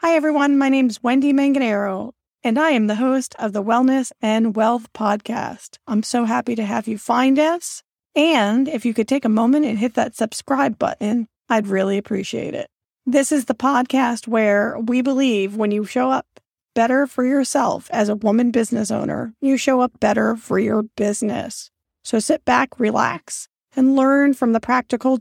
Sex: female